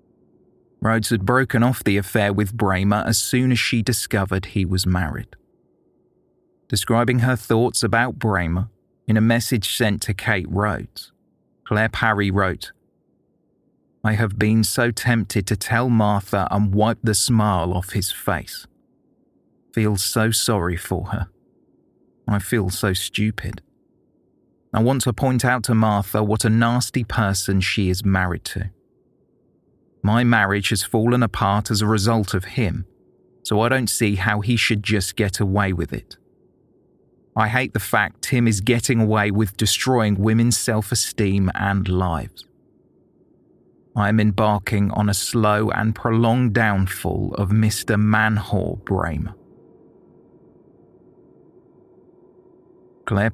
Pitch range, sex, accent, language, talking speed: 100-115 Hz, male, British, English, 135 wpm